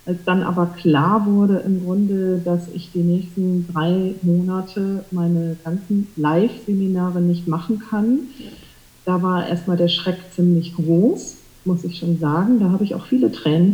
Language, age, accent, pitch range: German, 40-59, German, 170-200 Hz